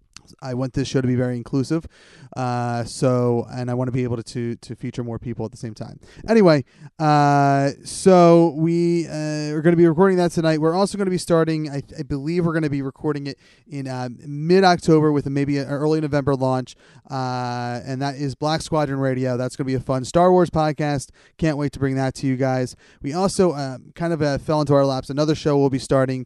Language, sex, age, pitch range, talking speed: English, male, 30-49, 135-165 Hz, 230 wpm